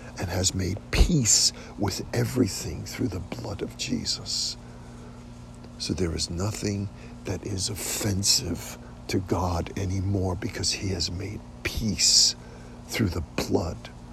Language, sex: English, male